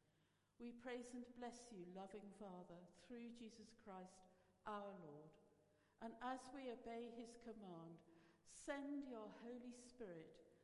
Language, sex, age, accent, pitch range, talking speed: English, female, 60-79, British, 175-235 Hz, 125 wpm